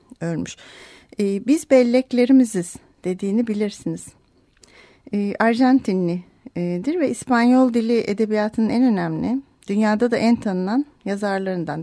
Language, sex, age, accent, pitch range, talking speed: Turkish, female, 40-59, native, 190-235 Hz, 85 wpm